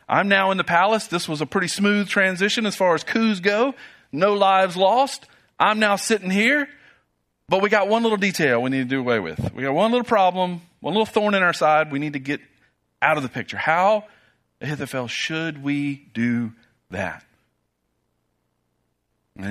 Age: 40-59